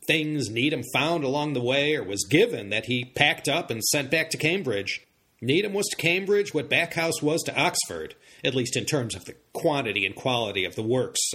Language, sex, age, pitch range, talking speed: English, male, 40-59, 120-165 Hz, 205 wpm